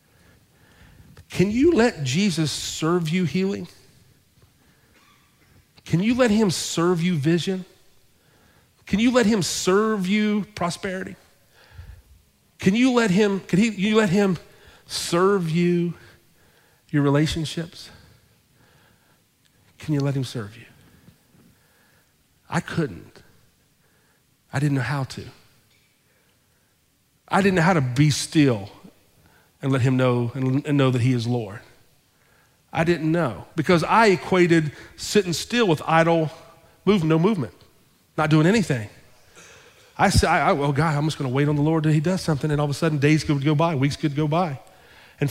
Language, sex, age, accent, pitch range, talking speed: English, male, 40-59, American, 135-185 Hz, 145 wpm